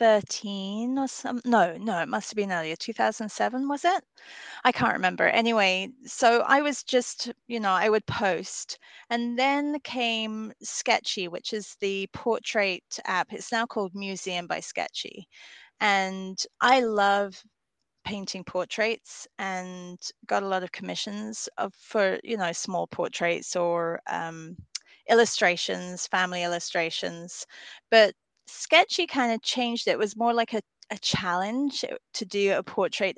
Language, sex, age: English, female, 30-49